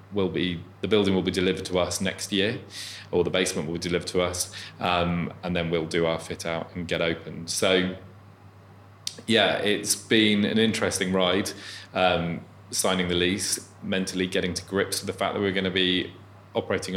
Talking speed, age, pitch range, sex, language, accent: 190 wpm, 20-39, 90-100 Hz, male, English, British